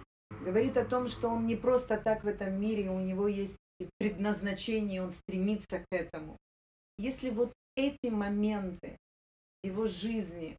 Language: Russian